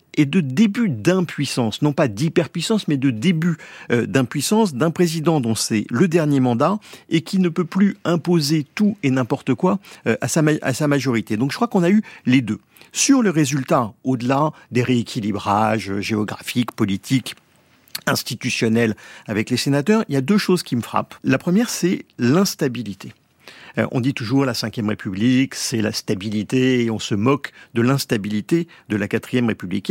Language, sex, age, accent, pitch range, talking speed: French, male, 50-69, French, 115-175 Hz, 165 wpm